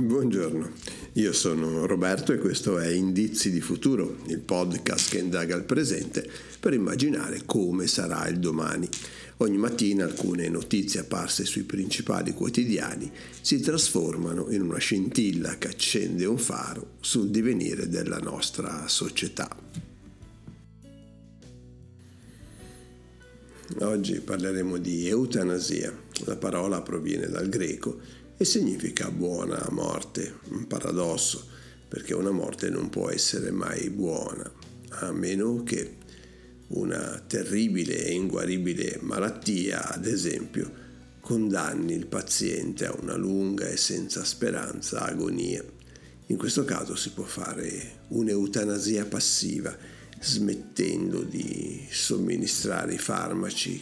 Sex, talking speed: male, 110 wpm